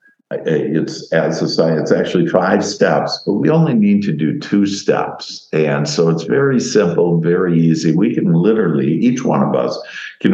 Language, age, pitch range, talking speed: English, 60-79, 75-105 Hz, 175 wpm